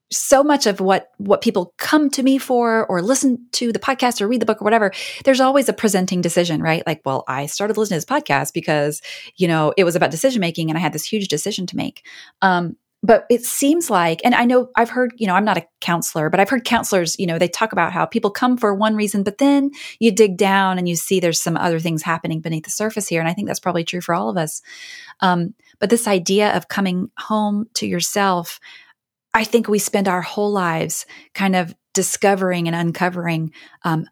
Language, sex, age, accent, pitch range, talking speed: English, female, 30-49, American, 175-230 Hz, 230 wpm